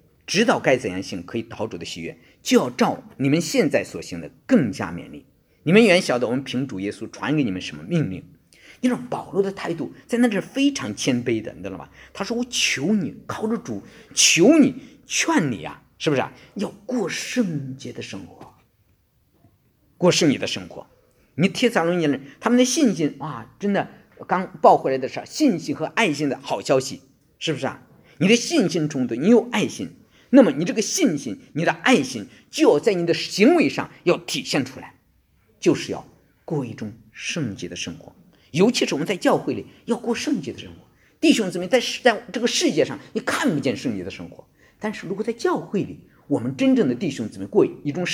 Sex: male